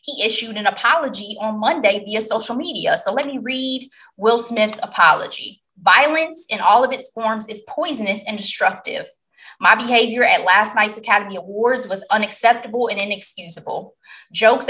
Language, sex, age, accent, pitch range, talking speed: English, female, 20-39, American, 185-240 Hz, 155 wpm